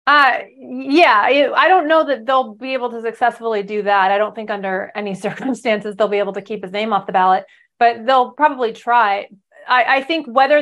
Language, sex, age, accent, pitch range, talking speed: English, female, 30-49, American, 210-275 Hz, 210 wpm